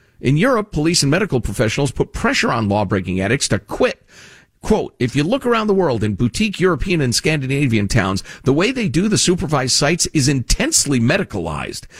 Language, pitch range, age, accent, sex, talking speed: English, 110-160 Hz, 50-69, American, male, 180 wpm